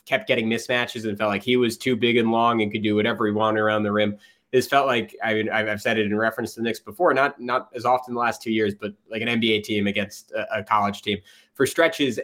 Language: English